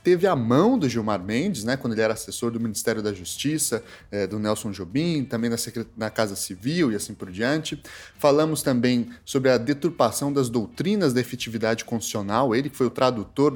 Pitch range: 110-135 Hz